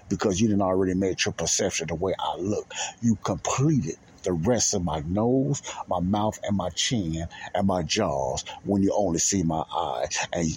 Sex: male